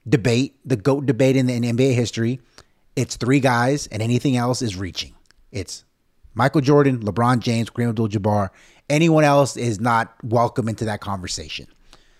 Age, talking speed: 30-49, 155 wpm